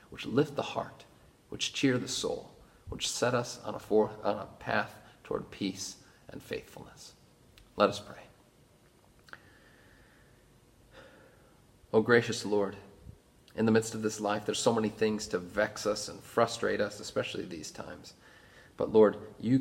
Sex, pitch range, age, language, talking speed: male, 100-120 Hz, 40-59, English, 145 wpm